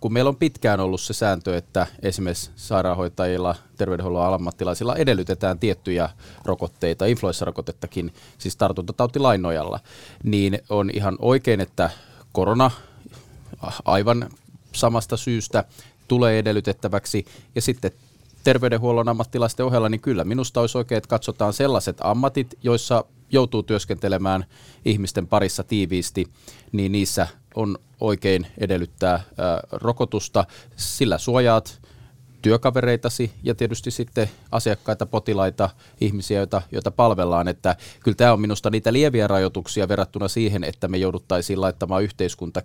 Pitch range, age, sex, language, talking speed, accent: 95-120 Hz, 30-49, male, Finnish, 115 wpm, native